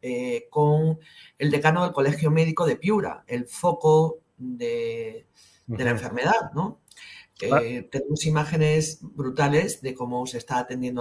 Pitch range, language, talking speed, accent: 130-170 Hz, Spanish, 135 wpm, Spanish